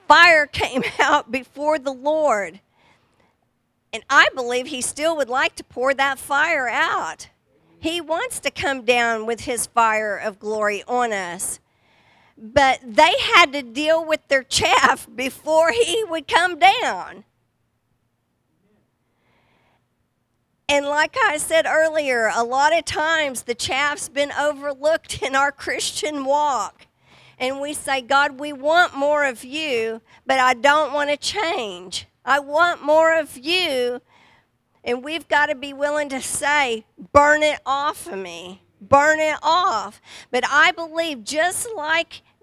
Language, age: English, 50-69